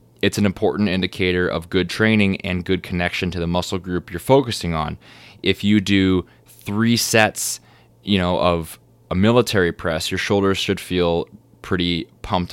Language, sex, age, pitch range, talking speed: English, male, 20-39, 85-105 Hz, 165 wpm